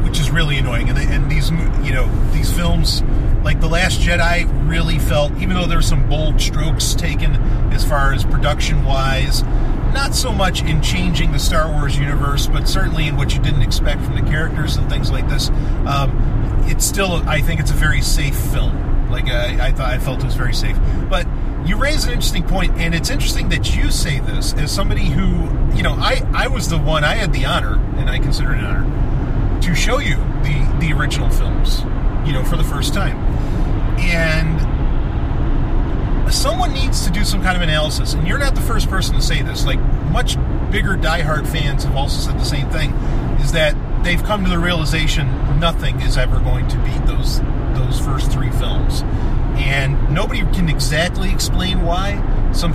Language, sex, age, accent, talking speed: English, male, 40-59, American, 195 wpm